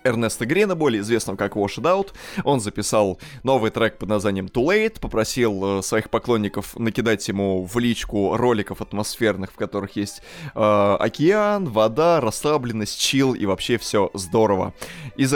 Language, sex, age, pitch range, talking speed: Russian, male, 20-39, 105-140 Hz, 150 wpm